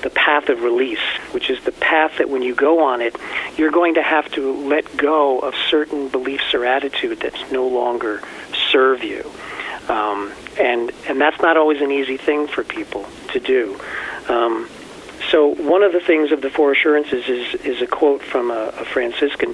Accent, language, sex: American, English, male